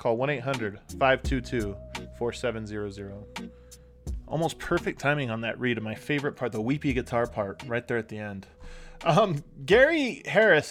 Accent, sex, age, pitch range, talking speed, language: American, male, 20-39, 130-180 Hz, 135 wpm, English